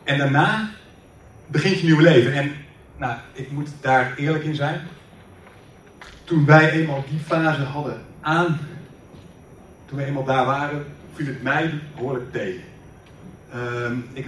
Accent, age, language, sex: Dutch, 30-49, Dutch, male